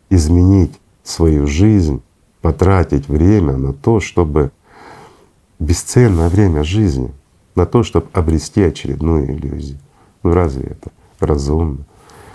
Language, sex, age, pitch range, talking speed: Russian, male, 40-59, 75-100 Hz, 100 wpm